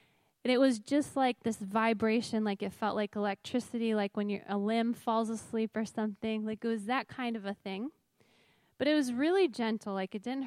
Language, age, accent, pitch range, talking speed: English, 10-29, American, 215-255 Hz, 205 wpm